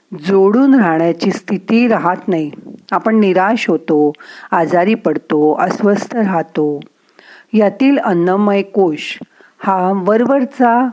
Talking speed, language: 95 wpm, Marathi